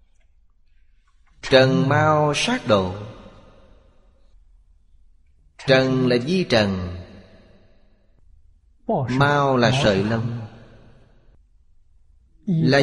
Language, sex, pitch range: Vietnamese, male, 90-130 Hz